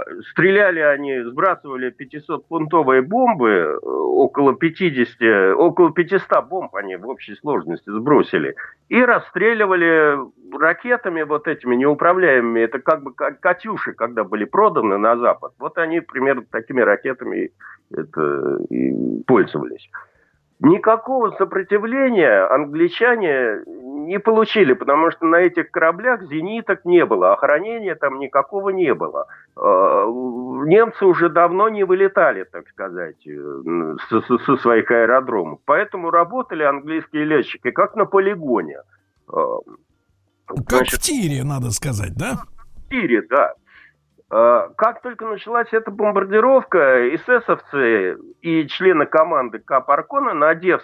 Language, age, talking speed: Russian, 50-69, 120 wpm